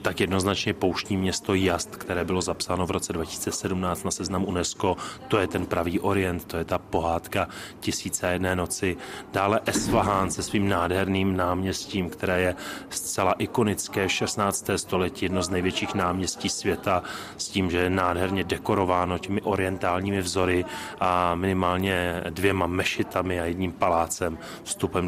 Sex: male